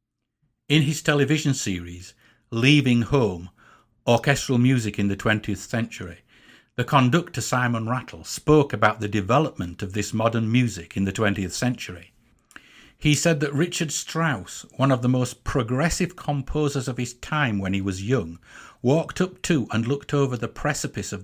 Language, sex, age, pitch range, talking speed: English, male, 50-69, 105-140 Hz, 155 wpm